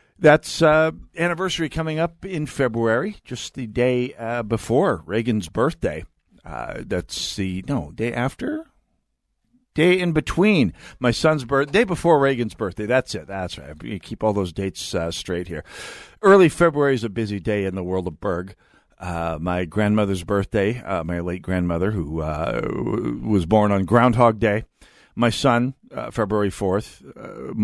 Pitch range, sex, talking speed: 95-120 Hz, male, 160 wpm